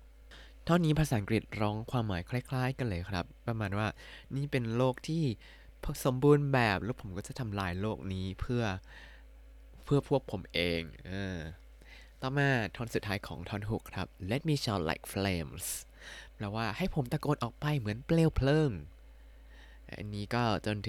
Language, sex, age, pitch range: Thai, male, 20-39, 90-125 Hz